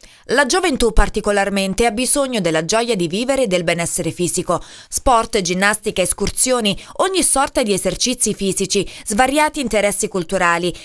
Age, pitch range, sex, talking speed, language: 20-39, 195-275 Hz, female, 135 wpm, Italian